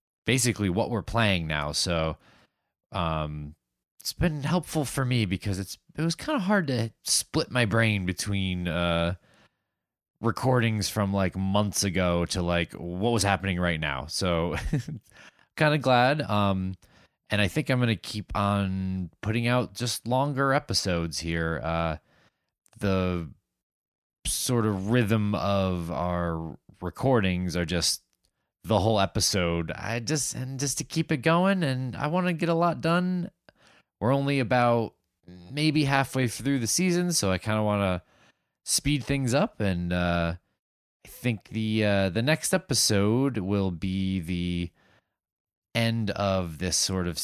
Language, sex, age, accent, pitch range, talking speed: English, male, 20-39, American, 90-125 Hz, 150 wpm